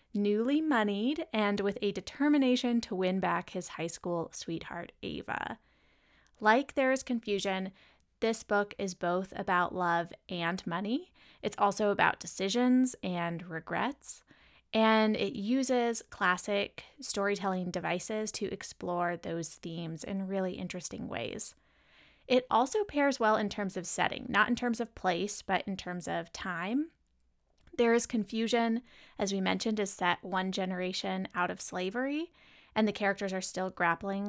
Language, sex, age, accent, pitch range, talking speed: English, female, 20-39, American, 185-225 Hz, 145 wpm